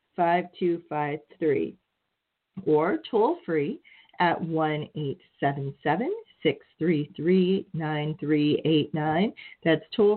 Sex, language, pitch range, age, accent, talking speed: female, English, 160-210 Hz, 40-59, American, 125 wpm